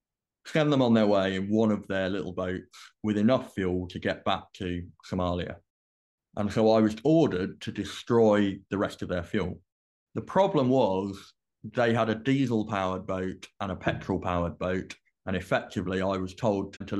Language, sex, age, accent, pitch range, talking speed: English, male, 20-39, British, 95-110 Hz, 175 wpm